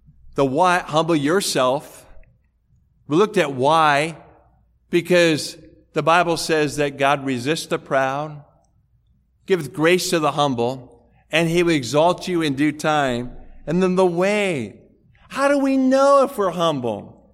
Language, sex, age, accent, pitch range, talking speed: English, male, 50-69, American, 140-190 Hz, 140 wpm